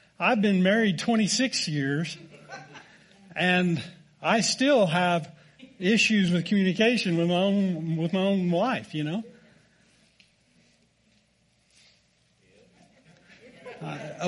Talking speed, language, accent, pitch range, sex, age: 95 wpm, English, American, 155-195 Hz, male, 40-59